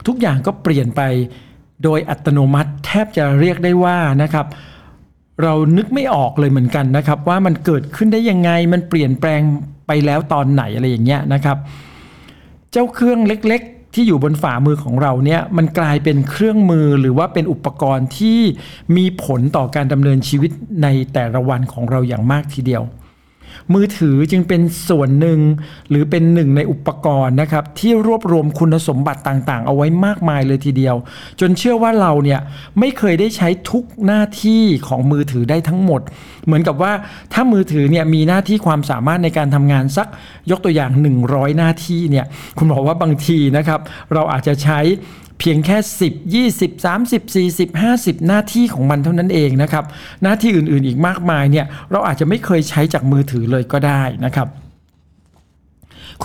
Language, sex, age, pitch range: Thai, male, 60-79, 140-180 Hz